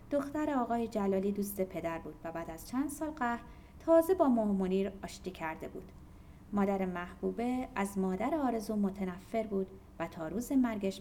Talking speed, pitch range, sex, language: 160 wpm, 180-285 Hz, female, Persian